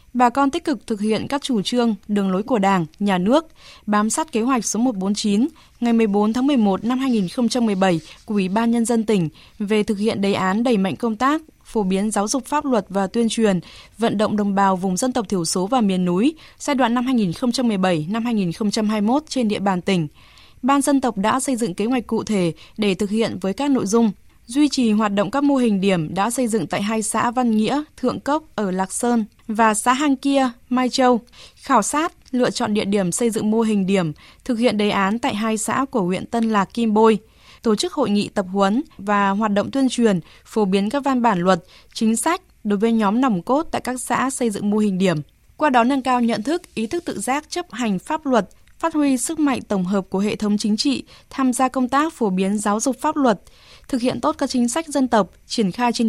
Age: 20-39